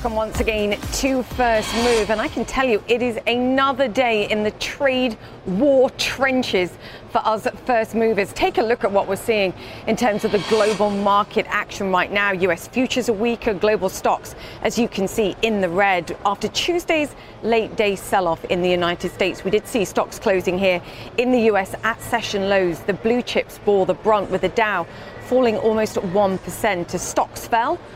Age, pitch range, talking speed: 40-59, 185-230 Hz, 190 wpm